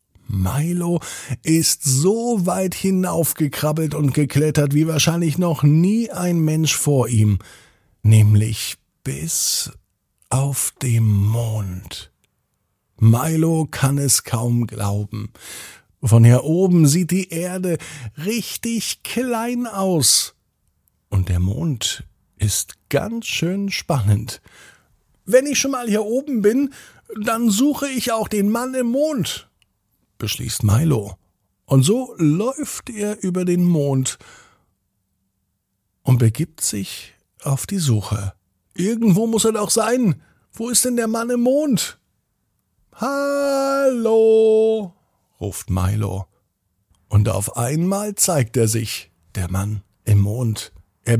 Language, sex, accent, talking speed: German, male, German, 115 wpm